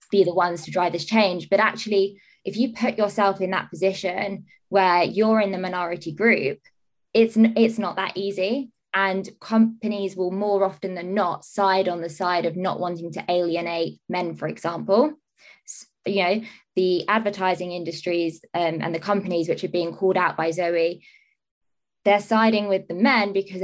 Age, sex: 20-39, female